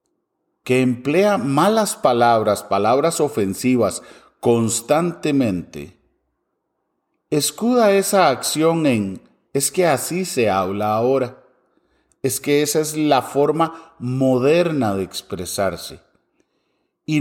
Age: 40-59